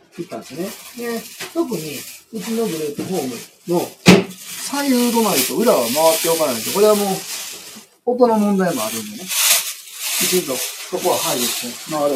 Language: Japanese